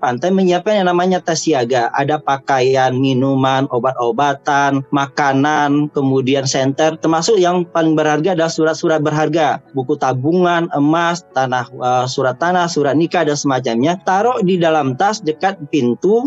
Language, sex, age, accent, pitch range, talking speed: Indonesian, male, 20-39, native, 150-180 Hz, 135 wpm